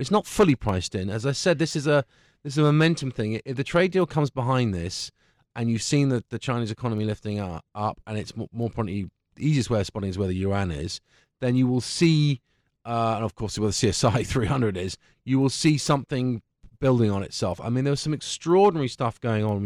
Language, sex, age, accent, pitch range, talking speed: English, male, 30-49, British, 105-135 Hz, 230 wpm